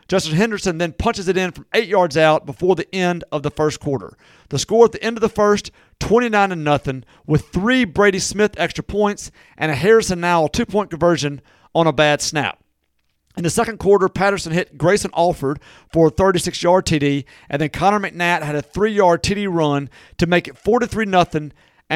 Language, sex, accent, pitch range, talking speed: English, male, American, 155-200 Hz, 185 wpm